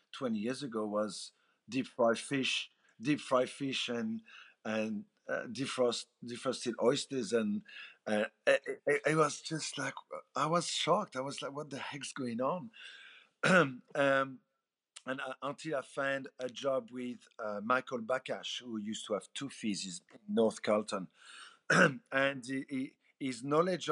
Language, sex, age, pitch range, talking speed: English, male, 50-69, 105-135 Hz, 150 wpm